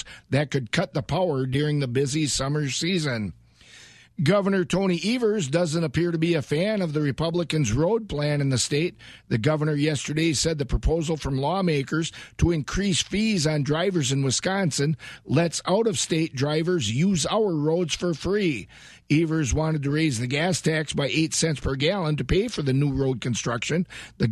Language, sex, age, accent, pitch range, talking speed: English, male, 50-69, American, 140-170 Hz, 175 wpm